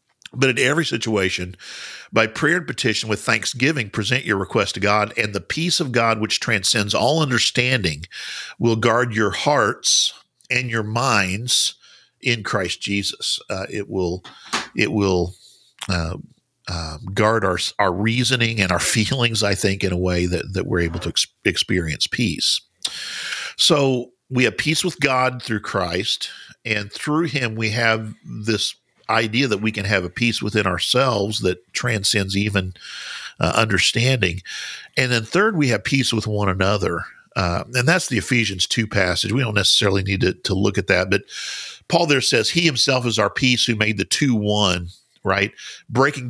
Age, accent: 50-69, American